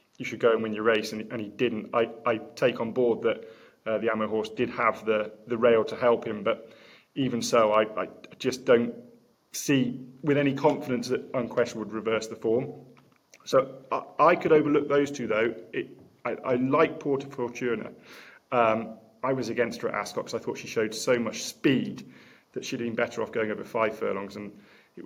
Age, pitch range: 20-39, 110-125 Hz